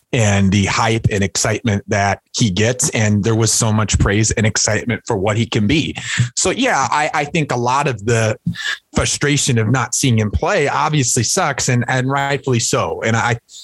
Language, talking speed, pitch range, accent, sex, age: English, 195 wpm, 105-140 Hz, American, male, 30-49